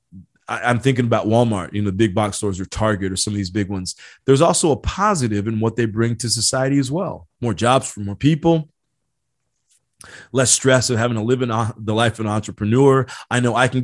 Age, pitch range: 30-49, 110-135 Hz